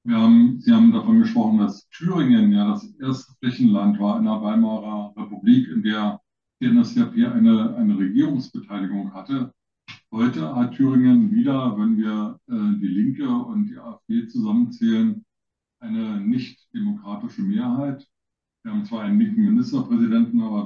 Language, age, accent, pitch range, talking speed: German, 50-69, German, 210-235 Hz, 140 wpm